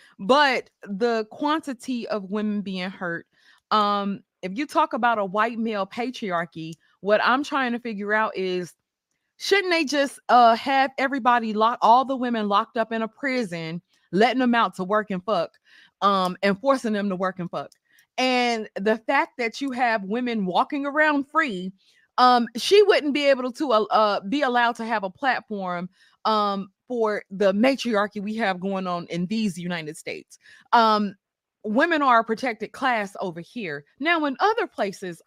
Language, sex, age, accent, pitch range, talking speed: English, female, 20-39, American, 190-245 Hz, 170 wpm